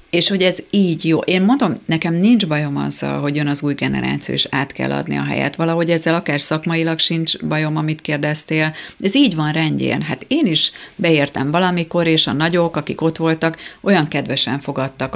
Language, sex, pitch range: Hungarian, female, 140-165 Hz